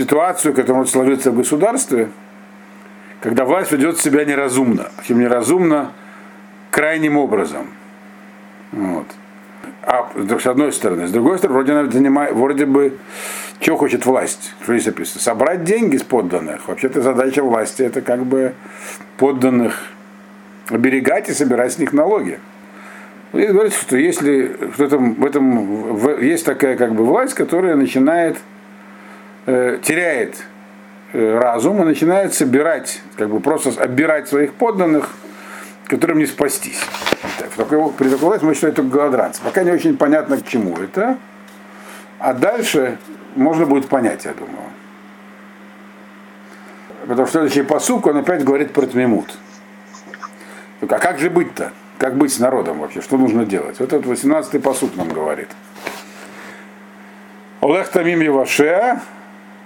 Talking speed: 130 wpm